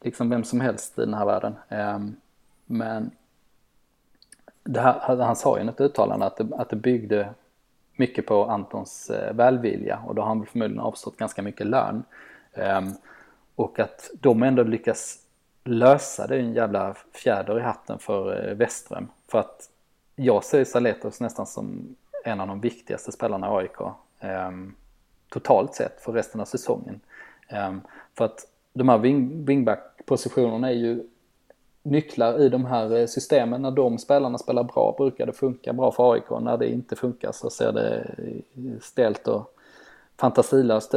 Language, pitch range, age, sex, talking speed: Swedish, 110-135 Hz, 20-39, male, 150 wpm